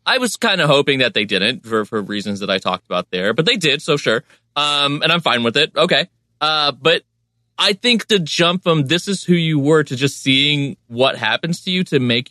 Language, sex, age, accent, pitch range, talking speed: English, male, 30-49, American, 115-160 Hz, 240 wpm